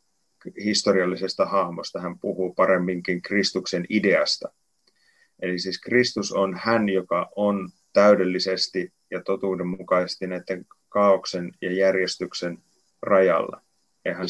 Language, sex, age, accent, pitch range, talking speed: Finnish, male, 30-49, native, 90-100 Hz, 100 wpm